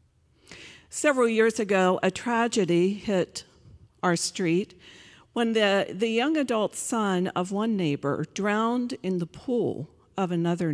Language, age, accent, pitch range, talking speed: English, 50-69, American, 185-235 Hz, 130 wpm